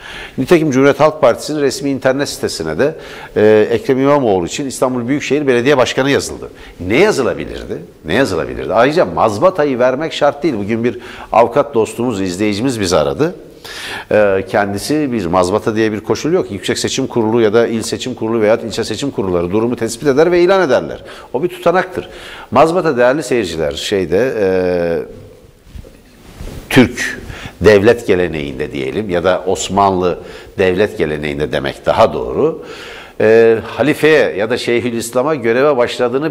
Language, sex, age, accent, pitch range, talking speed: Turkish, male, 60-79, native, 115-155 Hz, 140 wpm